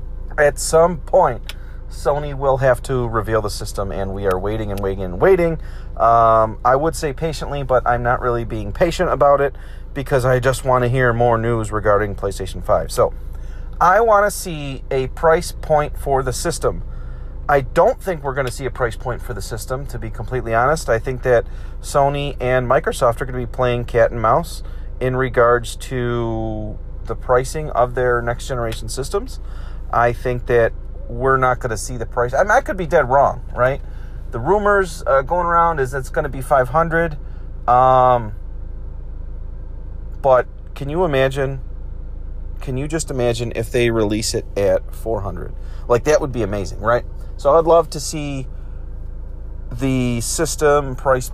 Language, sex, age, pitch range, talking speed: English, male, 30-49, 100-135 Hz, 180 wpm